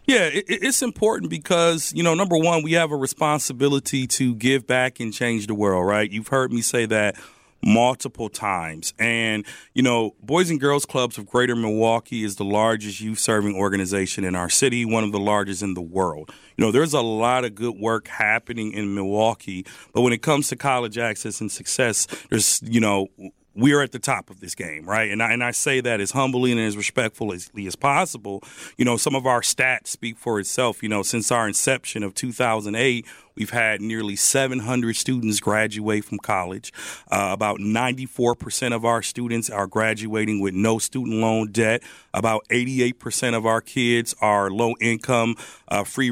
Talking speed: 185 wpm